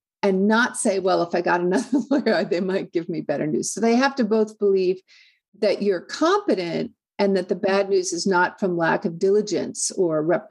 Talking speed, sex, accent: 210 wpm, female, American